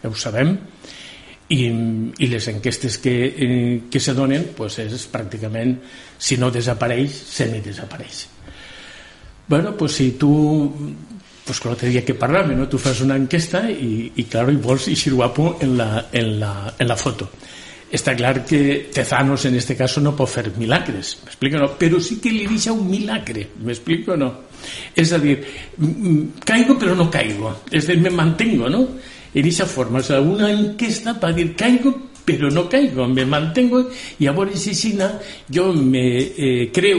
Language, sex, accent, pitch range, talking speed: Spanish, male, Spanish, 125-170 Hz, 165 wpm